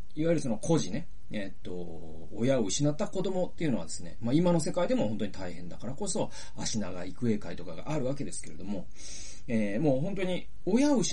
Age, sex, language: 40-59, male, Japanese